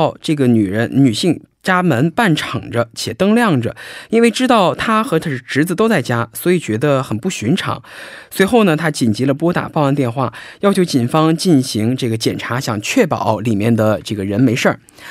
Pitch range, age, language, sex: 125-180 Hz, 20-39, Korean, male